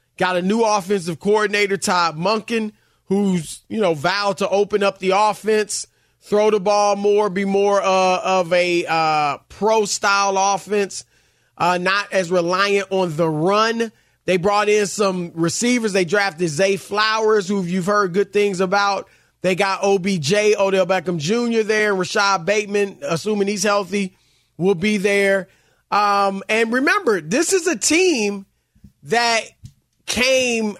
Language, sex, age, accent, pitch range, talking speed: English, male, 30-49, American, 185-220 Hz, 145 wpm